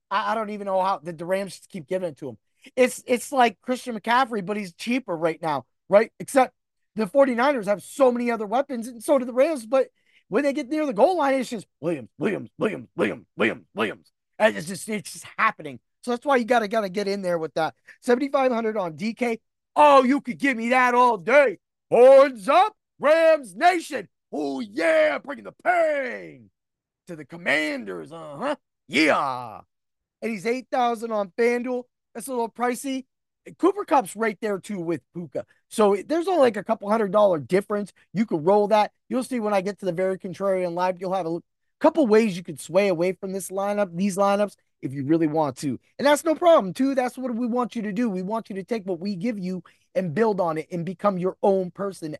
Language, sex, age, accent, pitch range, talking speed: English, male, 30-49, American, 185-255 Hz, 215 wpm